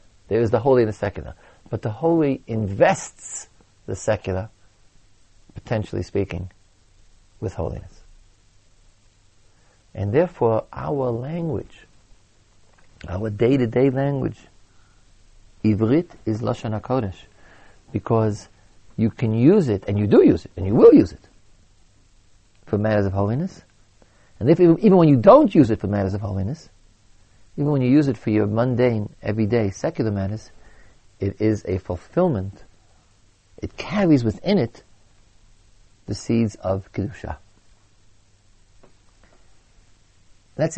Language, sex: English, male